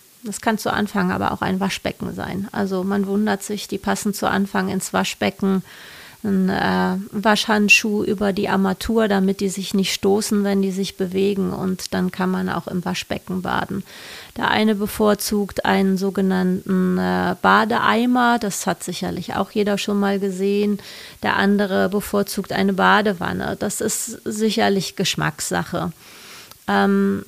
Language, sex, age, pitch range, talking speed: German, female, 30-49, 190-215 Hz, 145 wpm